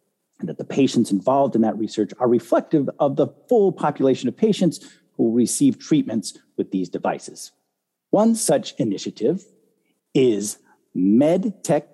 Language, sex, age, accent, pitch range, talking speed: English, male, 50-69, American, 115-165 Hz, 140 wpm